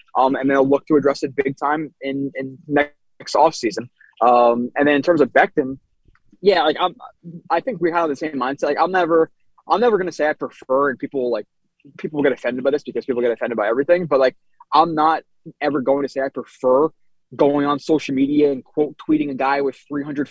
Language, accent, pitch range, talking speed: English, American, 135-160 Hz, 230 wpm